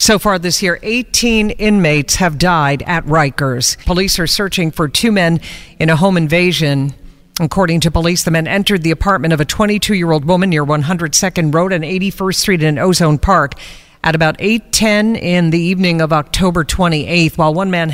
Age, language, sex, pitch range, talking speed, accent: 50-69, English, female, 155-195 Hz, 175 wpm, American